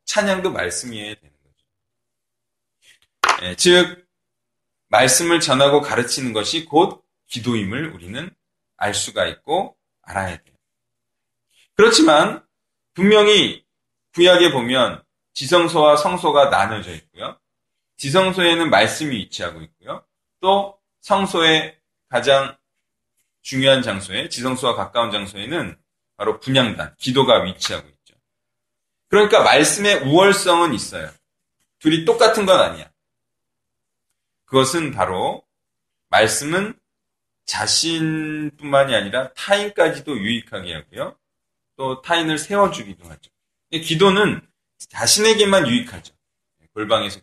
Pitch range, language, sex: 120-190 Hz, Korean, male